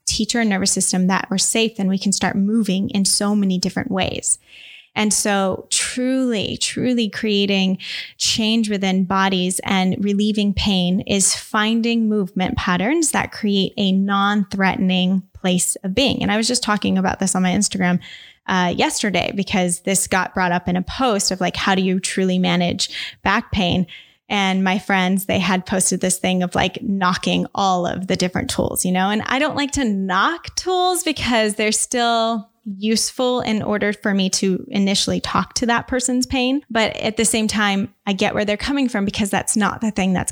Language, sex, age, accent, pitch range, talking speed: English, female, 10-29, American, 190-225 Hz, 185 wpm